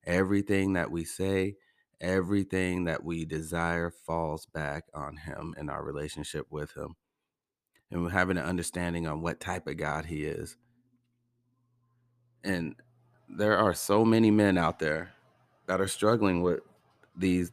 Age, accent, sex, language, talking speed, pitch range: 30-49, American, male, English, 145 wpm, 85-95 Hz